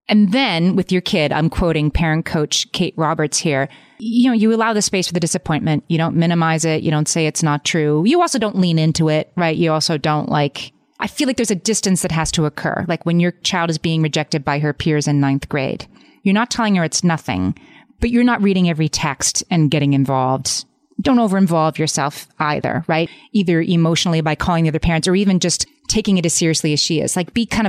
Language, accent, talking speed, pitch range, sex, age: English, American, 230 wpm, 150-190 Hz, female, 30-49